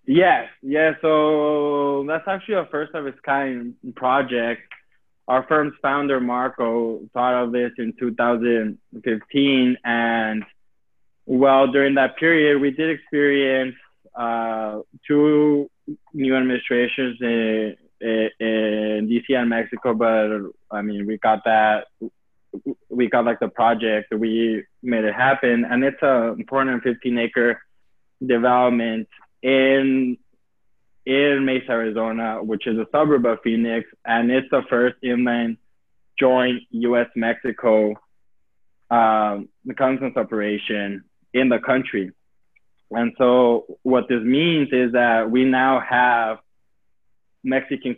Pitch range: 110-130 Hz